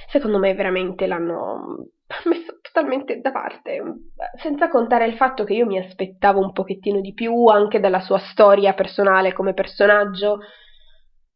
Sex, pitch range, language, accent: female, 185-225 Hz, Italian, native